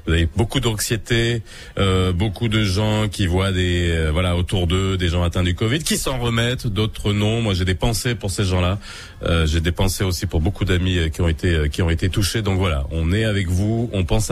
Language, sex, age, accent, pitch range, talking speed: French, male, 30-49, French, 90-125 Hz, 240 wpm